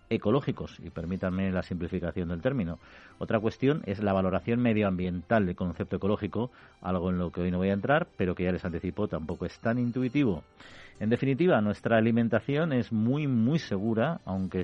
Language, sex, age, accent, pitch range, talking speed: Spanish, male, 40-59, Spanish, 90-115 Hz, 175 wpm